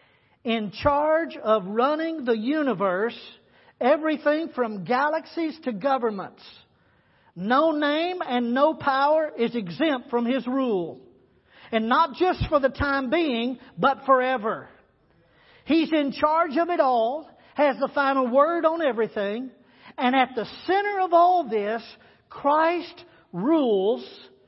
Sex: male